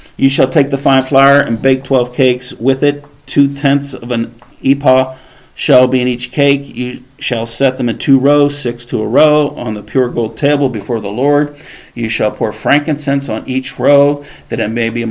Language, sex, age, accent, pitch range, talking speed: English, male, 50-69, American, 120-140 Hz, 205 wpm